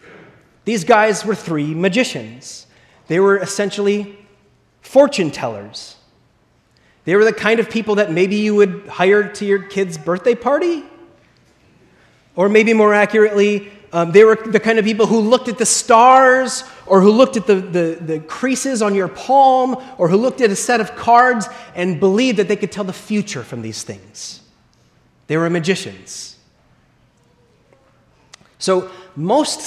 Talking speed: 155 wpm